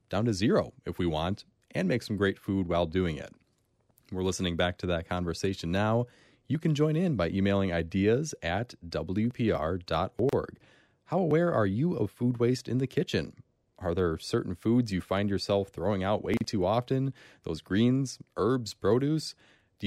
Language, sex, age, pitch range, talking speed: English, male, 30-49, 90-125 Hz, 170 wpm